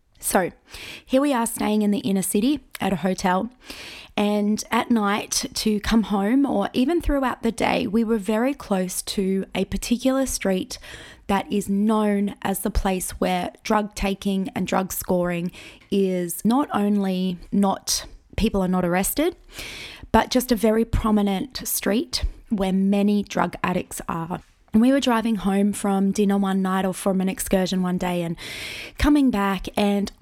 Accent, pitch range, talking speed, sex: Australian, 195-240 Hz, 160 wpm, female